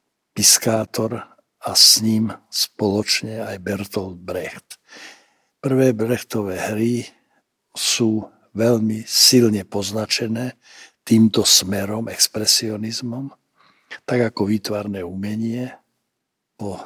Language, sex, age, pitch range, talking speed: Slovak, male, 60-79, 105-120 Hz, 80 wpm